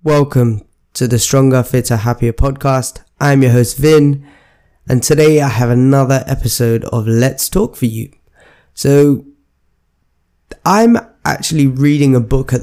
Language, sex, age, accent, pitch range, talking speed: English, male, 10-29, British, 115-140 Hz, 140 wpm